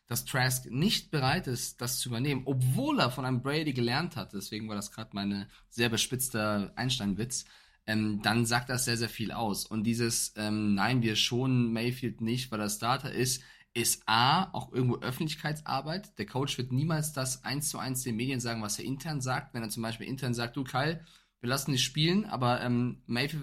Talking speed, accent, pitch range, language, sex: 200 wpm, German, 115-145 Hz, German, male